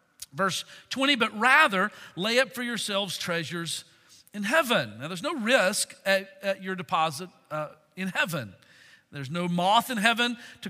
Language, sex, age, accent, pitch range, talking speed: English, male, 50-69, American, 190-260 Hz, 155 wpm